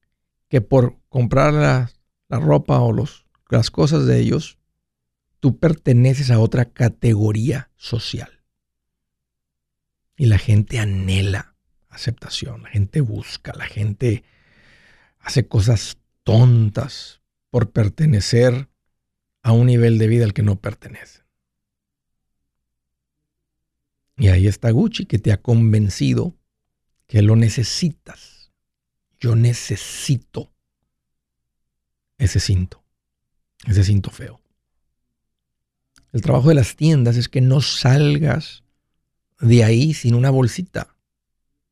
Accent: Mexican